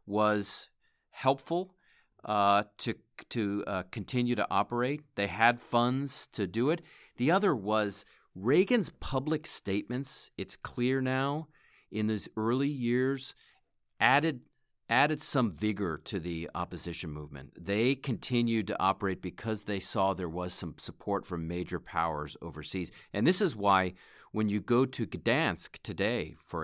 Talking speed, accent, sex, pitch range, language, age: 140 wpm, American, male, 90-120 Hz, English, 40-59